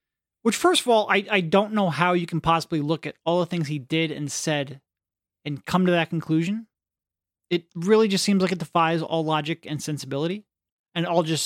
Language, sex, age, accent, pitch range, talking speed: English, male, 30-49, American, 165-230 Hz, 215 wpm